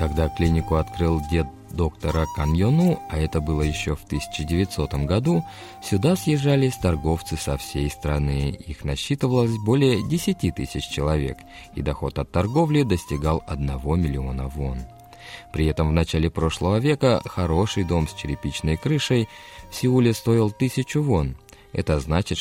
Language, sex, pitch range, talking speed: Russian, male, 75-115 Hz, 140 wpm